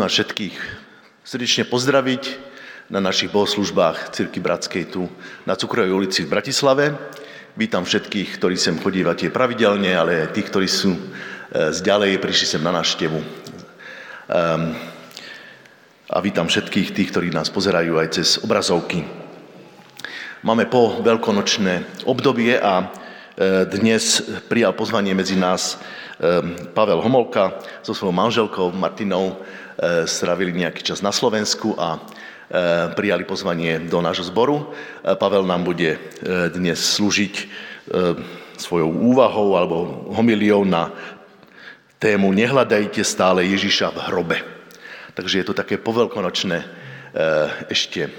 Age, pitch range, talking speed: 50-69, 90-105 Hz, 115 wpm